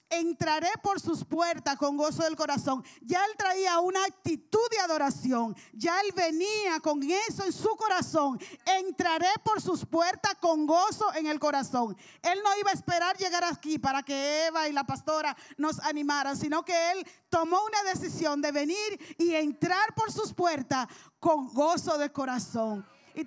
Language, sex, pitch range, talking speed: Spanish, female, 265-335 Hz, 170 wpm